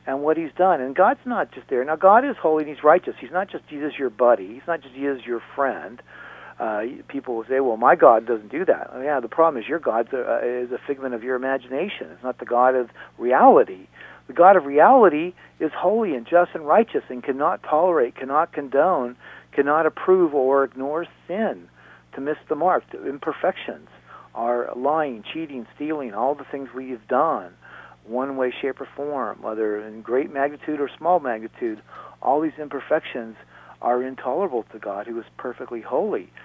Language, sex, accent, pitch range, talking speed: English, male, American, 120-150 Hz, 190 wpm